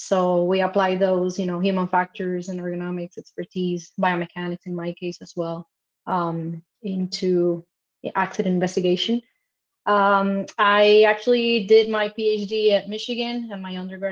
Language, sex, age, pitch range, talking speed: English, female, 20-39, 180-215 Hz, 135 wpm